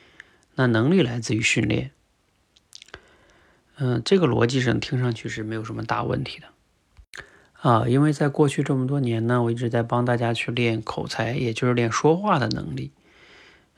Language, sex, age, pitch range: Chinese, male, 30-49, 120-150 Hz